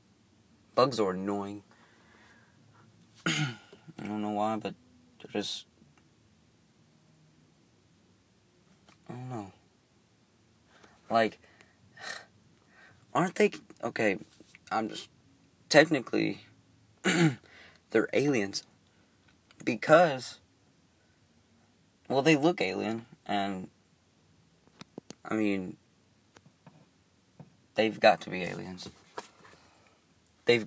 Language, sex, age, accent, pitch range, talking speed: English, male, 30-49, American, 100-110 Hz, 70 wpm